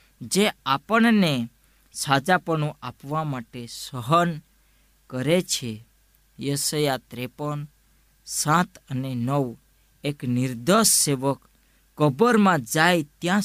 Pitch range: 125-160 Hz